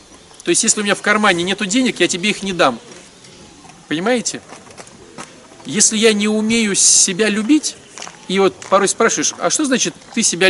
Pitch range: 165-220 Hz